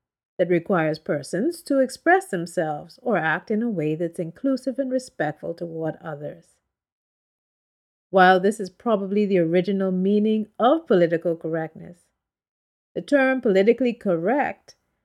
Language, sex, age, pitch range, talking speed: English, female, 50-69, 180-250 Hz, 125 wpm